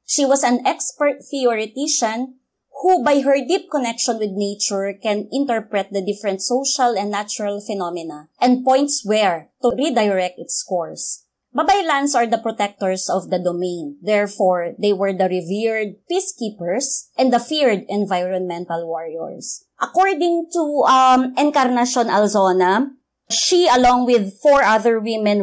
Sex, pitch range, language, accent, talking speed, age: female, 195-260 Hz, English, Filipino, 130 wpm, 20-39